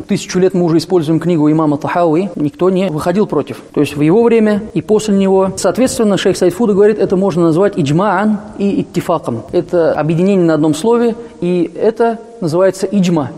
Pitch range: 160-200 Hz